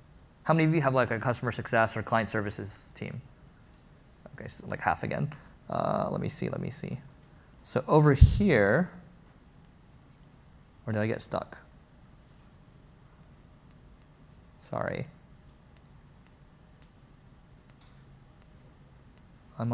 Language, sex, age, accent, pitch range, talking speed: English, male, 20-39, American, 110-130 Hz, 105 wpm